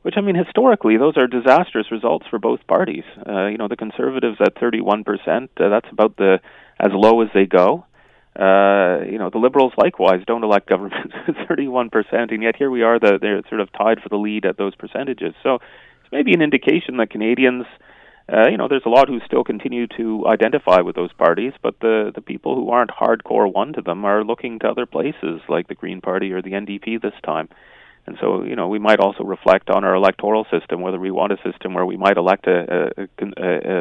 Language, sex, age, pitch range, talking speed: English, male, 30-49, 95-115 Hz, 220 wpm